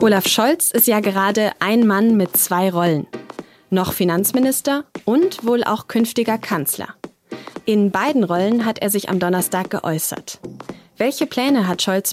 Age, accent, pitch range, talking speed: 20-39, German, 175-225 Hz, 150 wpm